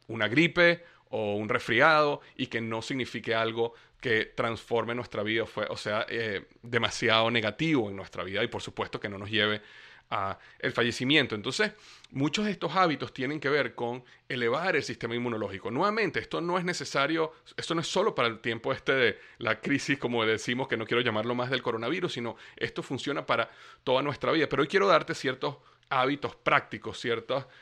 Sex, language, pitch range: male, Spanish, 115-150 Hz